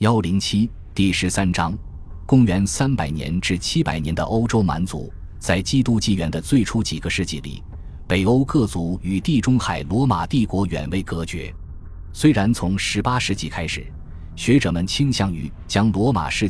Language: Chinese